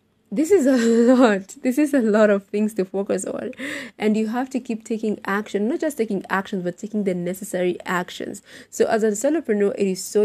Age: 20-39